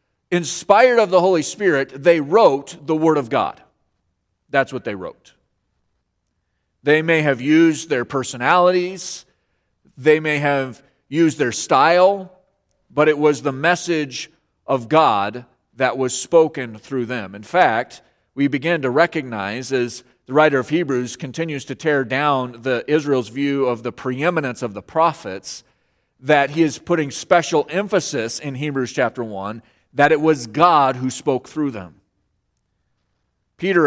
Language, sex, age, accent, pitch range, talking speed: English, male, 40-59, American, 130-165 Hz, 145 wpm